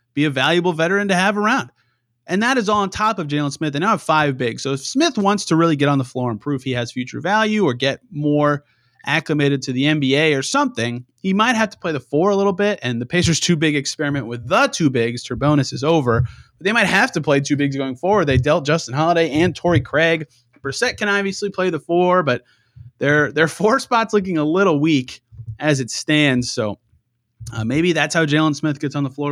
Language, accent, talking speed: English, American, 235 wpm